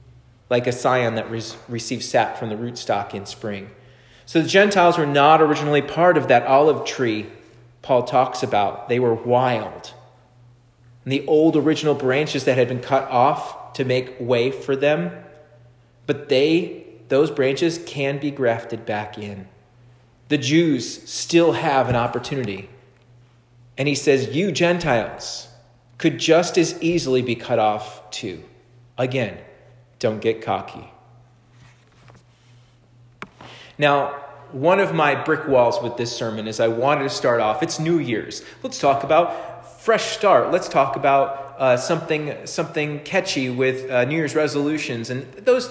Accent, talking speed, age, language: American, 145 wpm, 30-49, English